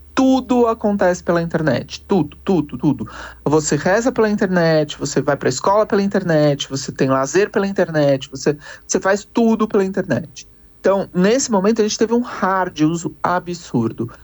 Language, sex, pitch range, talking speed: Portuguese, male, 140-185 Hz, 165 wpm